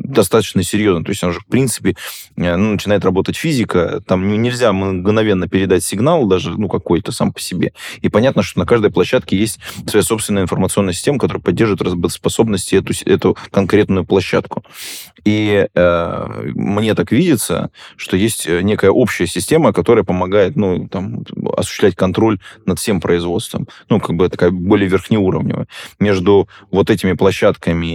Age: 20-39